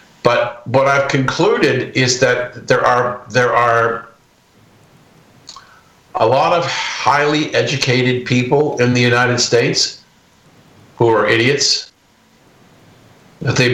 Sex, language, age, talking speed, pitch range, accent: male, English, 50-69, 110 wpm, 110-125 Hz, American